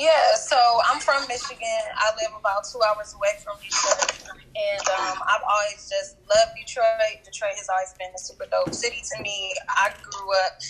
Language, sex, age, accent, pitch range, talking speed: English, female, 10-29, American, 185-255 Hz, 185 wpm